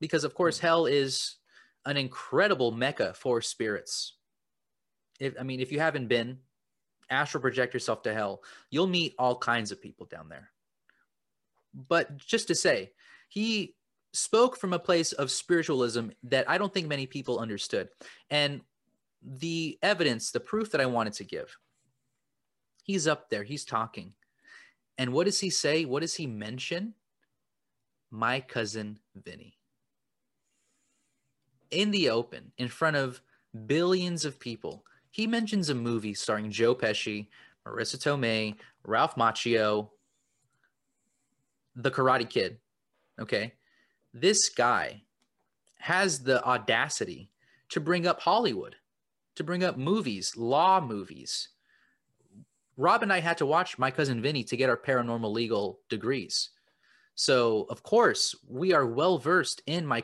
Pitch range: 120-170 Hz